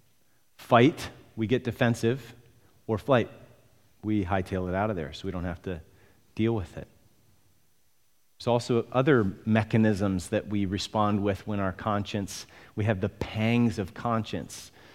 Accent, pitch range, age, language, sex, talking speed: American, 105-145 Hz, 30-49, English, male, 150 wpm